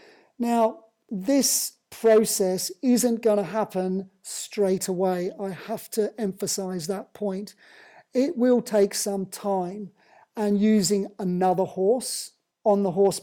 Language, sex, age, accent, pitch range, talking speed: English, male, 40-59, British, 190-225 Hz, 120 wpm